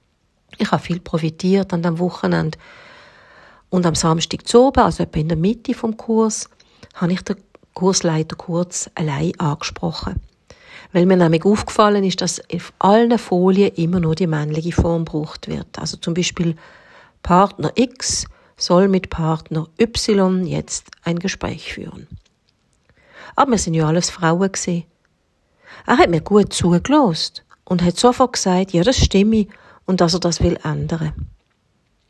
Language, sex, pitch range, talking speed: German, female, 165-200 Hz, 150 wpm